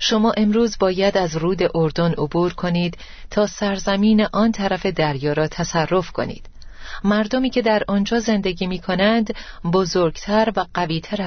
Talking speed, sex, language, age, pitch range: 140 wpm, female, Persian, 40-59, 160-200 Hz